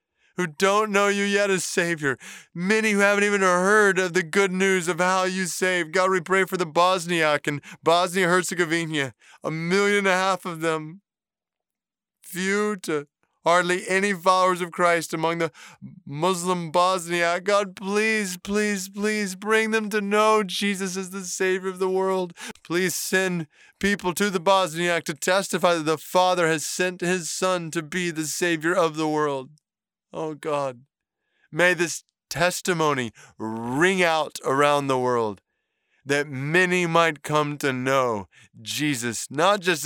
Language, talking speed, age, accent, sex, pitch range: English, 155 wpm, 20-39, American, male, 140-190 Hz